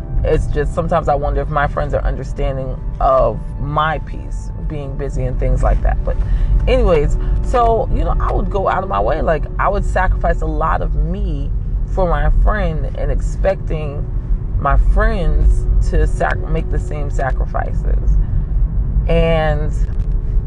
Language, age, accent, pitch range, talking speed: English, 20-39, American, 125-155 Hz, 155 wpm